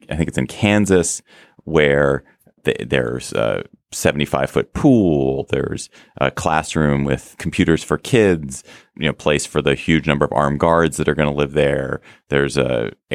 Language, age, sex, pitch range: English, 30-49, male, 70-85 Hz